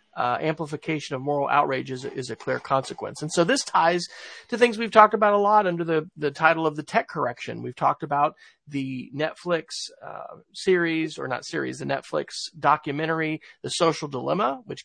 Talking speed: 185 wpm